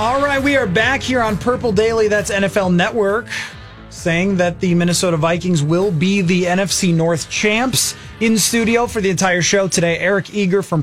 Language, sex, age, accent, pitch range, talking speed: English, male, 30-49, American, 145-185 Hz, 185 wpm